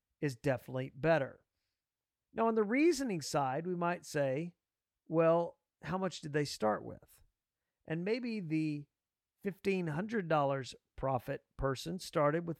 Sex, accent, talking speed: male, American, 125 wpm